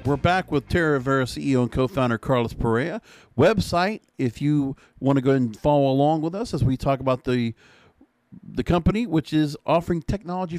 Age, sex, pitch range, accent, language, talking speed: 50-69, male, 120-160 Hz, American, English, 185 wpm